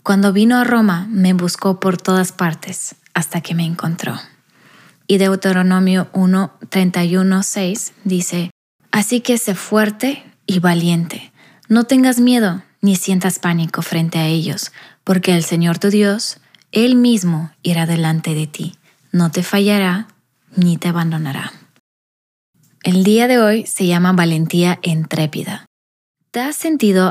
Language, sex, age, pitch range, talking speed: Spanish, female, 20-39, 170-200 Hz, 135 wpm